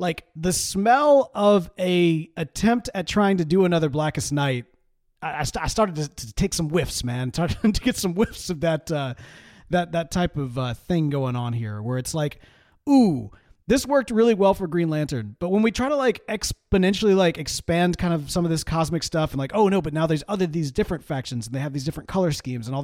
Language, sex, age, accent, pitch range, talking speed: English, male, 30-49, American, 145-195 Hz, 225 wpm